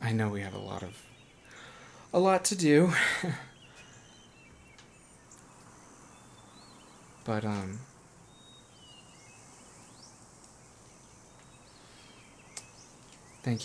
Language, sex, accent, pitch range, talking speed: English, male, American, 105-130 Hz, 60 wpm